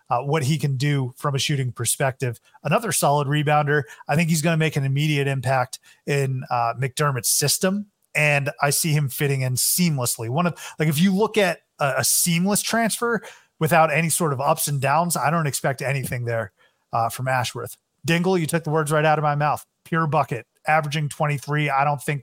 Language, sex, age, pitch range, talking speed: English, male, 30-49, 135-165 Hz, 205 wpm